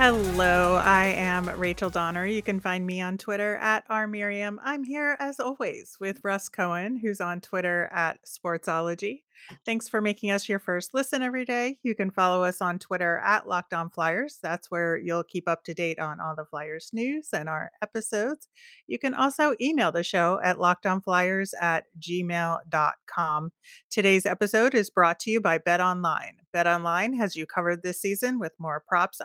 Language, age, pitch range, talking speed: English, 30-49, 175-220 Hz, 180 wpm